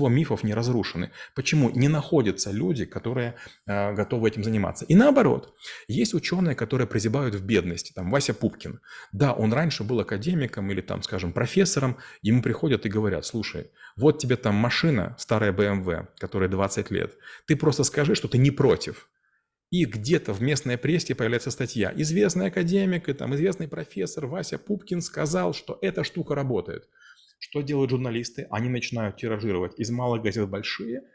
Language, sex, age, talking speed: Russian, male, 30-49, 160 wpm